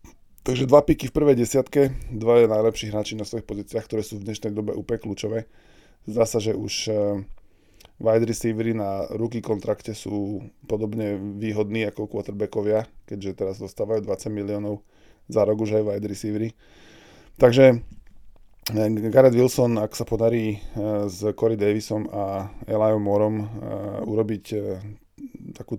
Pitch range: 105-115 Hz